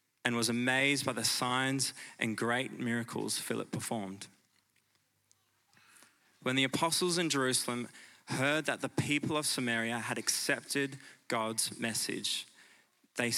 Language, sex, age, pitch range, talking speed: English, male, 20-39, 115-140 Hz, 120 wpm